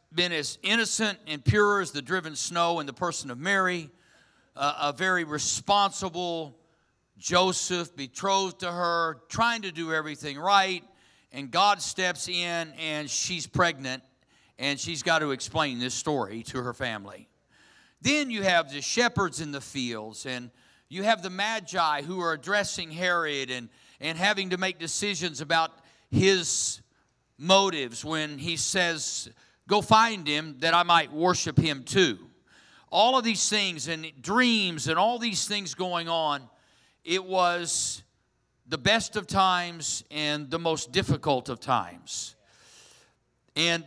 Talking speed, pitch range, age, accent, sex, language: 145 wpm, 145-185 Hz, 50-69, American, male, English